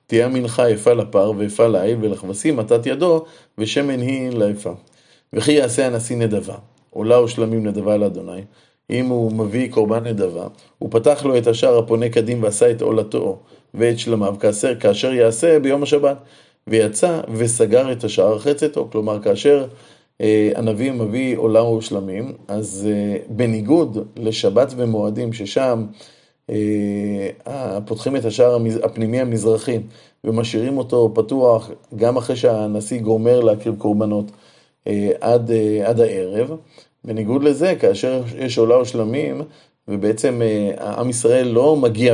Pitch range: 110-130 Hz